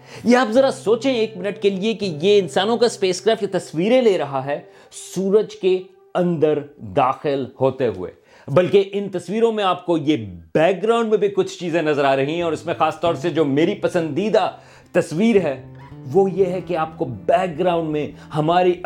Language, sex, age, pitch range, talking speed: Urdu, male, 40-59, 140-185 Hz, 195 wpm